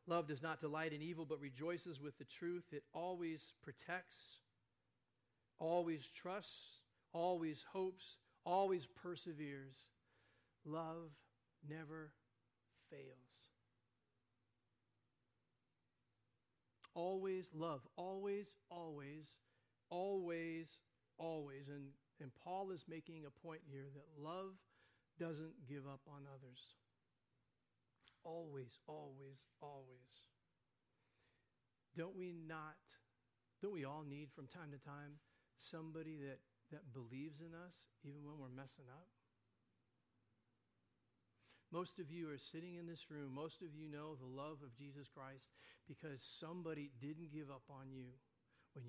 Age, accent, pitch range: 50-69, American, 125-160 Hz